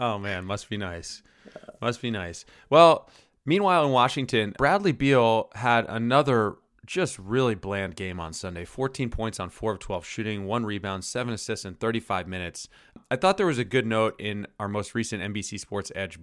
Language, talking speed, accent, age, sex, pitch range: English, 185 wpm, American, 30-49, male, 100-130 Hz